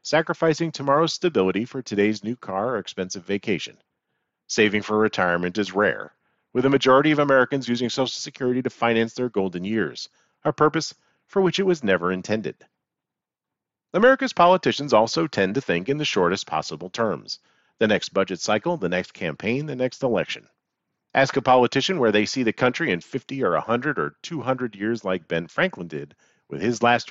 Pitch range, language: 105-150 Hz, English